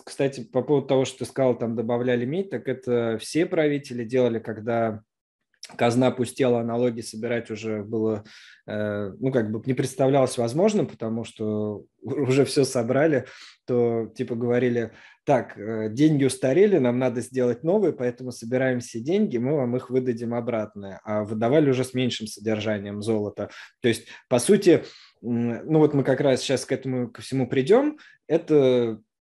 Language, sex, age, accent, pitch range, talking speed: Russian, male, 20-39, native, 110-130 Hz, 155 wpm